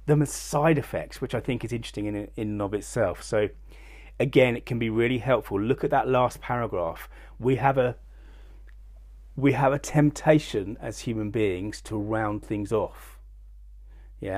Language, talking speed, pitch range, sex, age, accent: English, 165 wpm, 80-125 Hz, male, 30-49, British